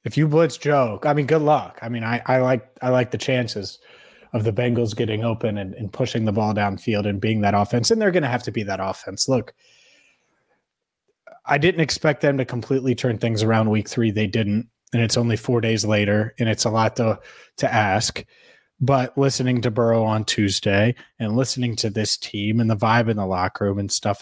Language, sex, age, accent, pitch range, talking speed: English, male, 30-49, American, 110-135 Hz, 220 wpm